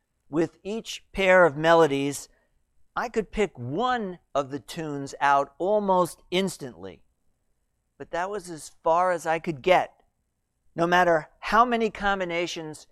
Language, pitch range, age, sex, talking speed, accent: English, 130-185 Hz, 50-69, male, 135 wpm, American